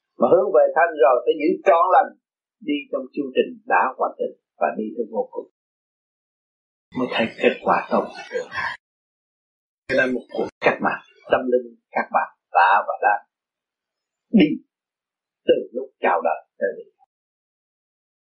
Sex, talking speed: male, 150 wpm